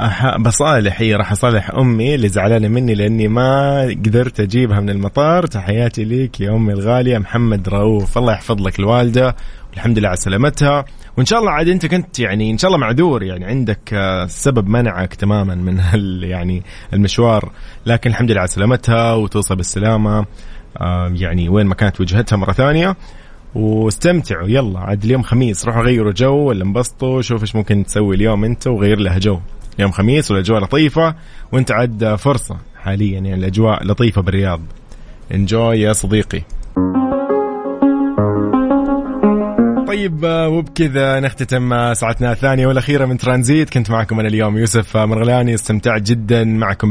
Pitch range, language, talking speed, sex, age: 105-130 Hz, Arabic, 145 wpm, male, 20-39